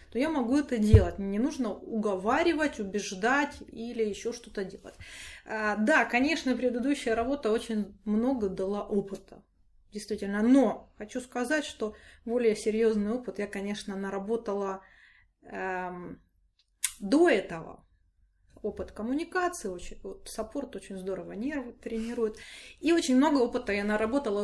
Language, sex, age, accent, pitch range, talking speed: Russian, female, 20-39, native, 200-250 Hz, 125 wpm